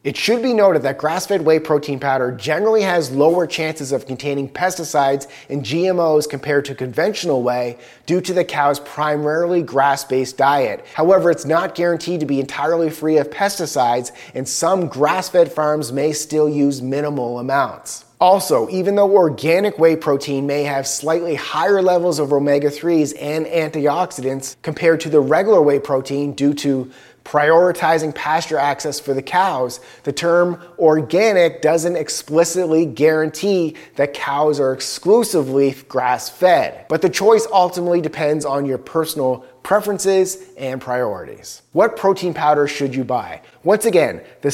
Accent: American